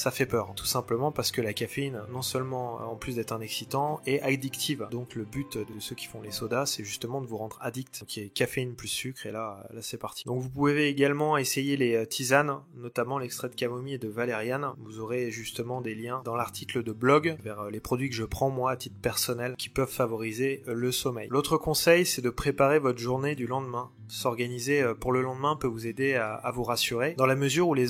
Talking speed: 230 wpm